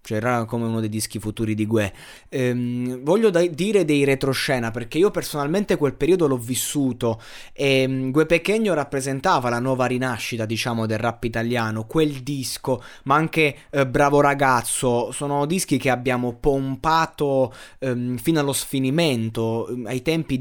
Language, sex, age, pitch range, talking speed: Italian, male, 20-39, 115-140 Hz, 155 wpm